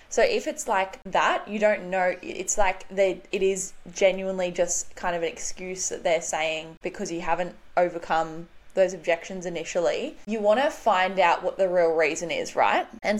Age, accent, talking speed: 10-29, Australian, 180 wpm